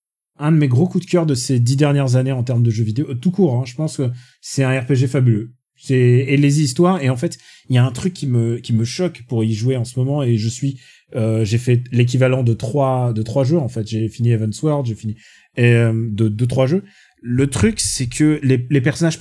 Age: 30-49